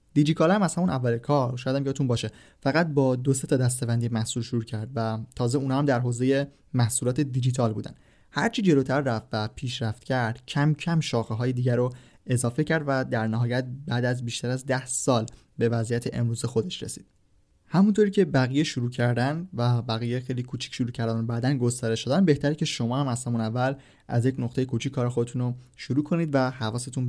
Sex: male